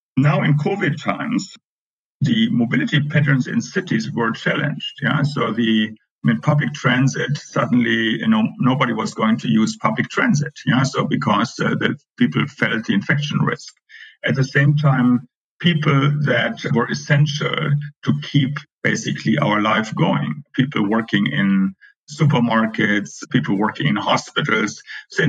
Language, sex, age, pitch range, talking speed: English, male, 50-69, 120-155 Hz, 140 wpm